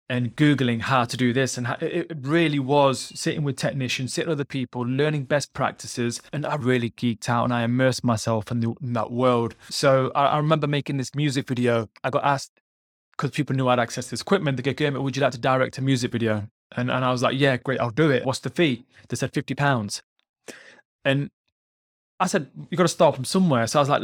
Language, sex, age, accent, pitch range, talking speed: English, male, 20-39, British, 120-145 Hz, 235 wpm